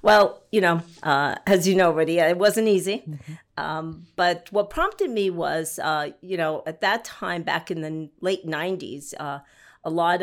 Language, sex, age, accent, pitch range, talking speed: English, female, 50-69, American, 155-190 Hz, 180 wpm